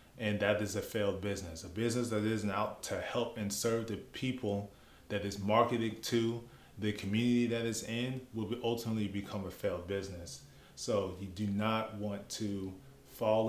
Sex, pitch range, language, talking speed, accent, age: male, 100-120 Hz, English, 175 wpm, American, 30-49